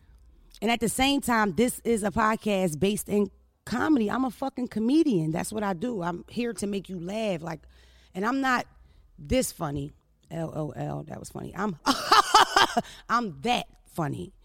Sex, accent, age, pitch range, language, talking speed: female, American, 30-49, 155-205 Hz, English, 165 wpm